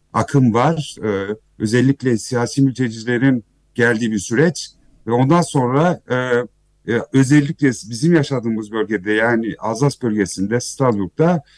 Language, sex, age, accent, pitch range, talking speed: Turkish, male, 50-69, native, 115-140 Hz, 110 wpm